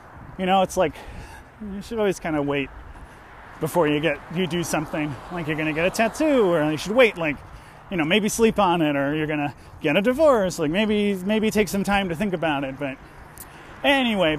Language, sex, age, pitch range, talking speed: English, male, 30-49, 125-190 Hz, 220 wpm